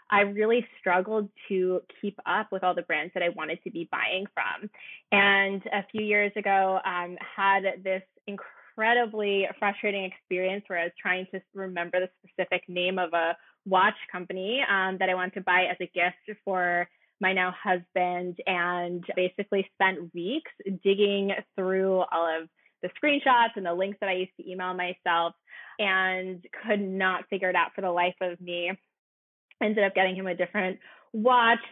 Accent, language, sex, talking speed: American, English, female, 170 wpm